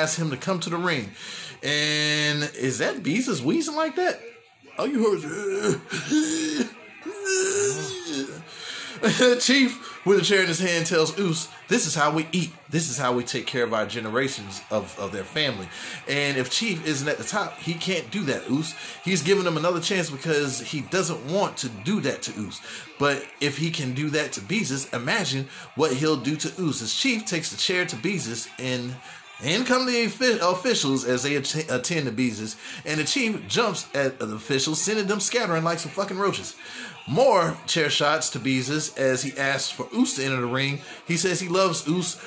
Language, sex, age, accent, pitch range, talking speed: English, male, 20-39, American, 135-190 Hz, 185 wpm